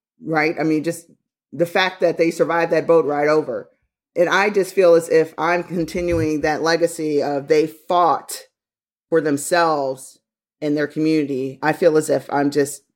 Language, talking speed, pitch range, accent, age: English, 170 wpm, 155-190 Hz, American, 30-49